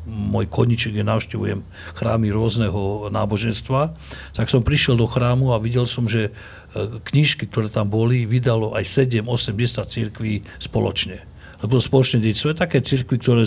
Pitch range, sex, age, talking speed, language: 105-125 Hz, male, 50-69, 145 wpm, Slovak